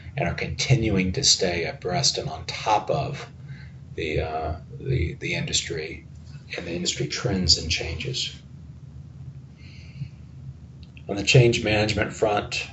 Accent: American